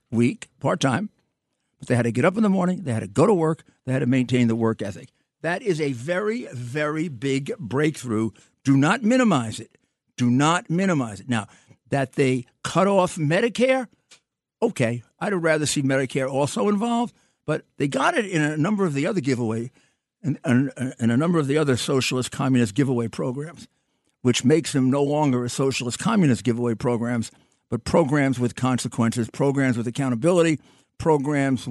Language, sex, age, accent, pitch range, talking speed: English, male, 50-69, American, 125-165 Hz, 180 wpm